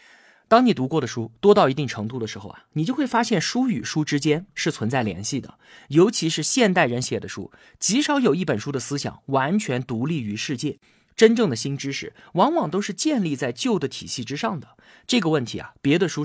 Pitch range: 125-205 Hz